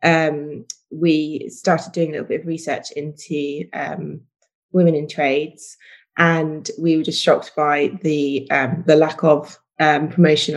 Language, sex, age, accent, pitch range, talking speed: English, female, 20-39, British, 155-175 Hz, 155 wpm